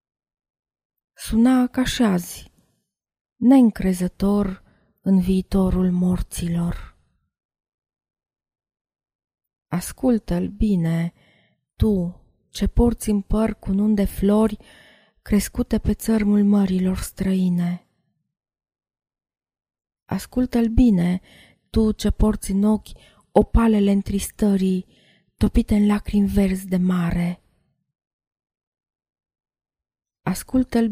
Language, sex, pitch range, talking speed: Romanian, female, 185-220 Hz, 75 wpm